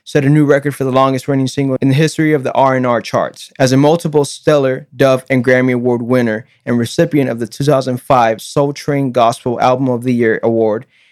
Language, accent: English, American